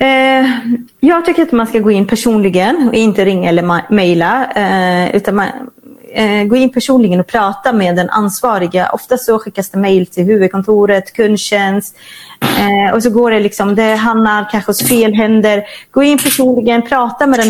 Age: 30-49